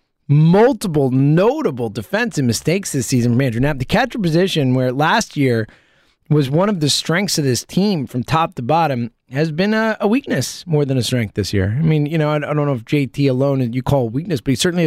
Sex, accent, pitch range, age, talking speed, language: male, American, 130-185 Hz, 20-39, 220 wpm, English